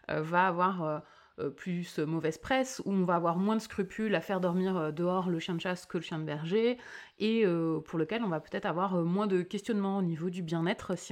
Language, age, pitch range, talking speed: French, 30-49, 175-210 Hz, 215 wpm